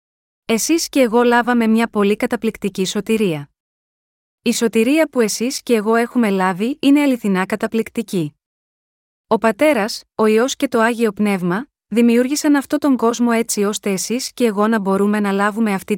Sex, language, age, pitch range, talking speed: female, Greek, 20-39, 200-245 Hz, 155 wpm